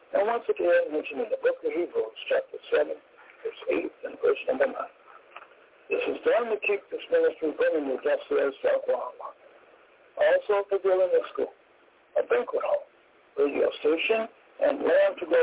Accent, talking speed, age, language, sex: American, 175 wpm, 60-79, English, male